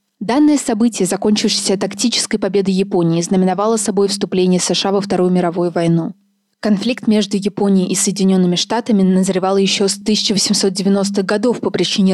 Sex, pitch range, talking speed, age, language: female, 185-215 Hz, 135 wpm, 20-39, Russian